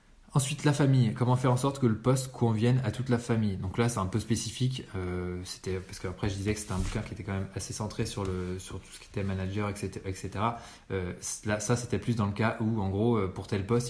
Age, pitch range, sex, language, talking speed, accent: 20-39, 95-120 Hz, male, French, 265 wpm, French